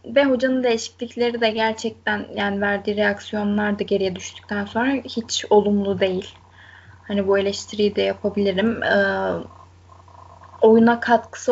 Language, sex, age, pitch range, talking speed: Turkish, female, 10-29, 200-230 Hz, 120 wpm